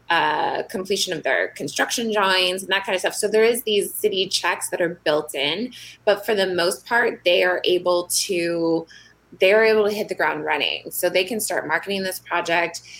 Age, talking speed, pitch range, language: 20-39, 205 wpm, 165-205 Hz, English